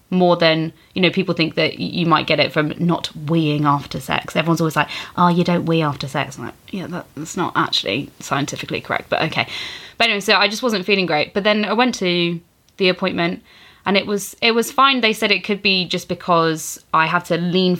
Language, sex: English, female